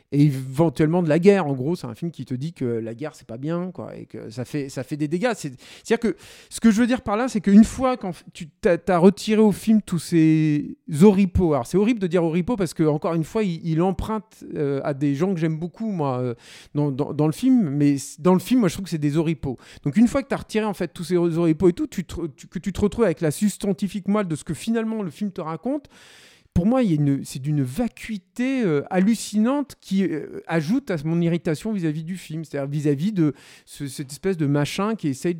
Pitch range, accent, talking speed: 145-195 Hz, French, 255 wpm